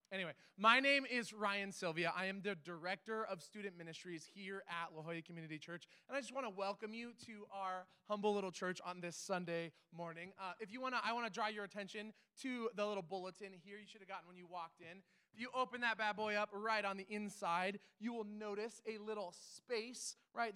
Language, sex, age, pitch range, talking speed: English, male, 20-39, 180-220 Hz, 225 wpm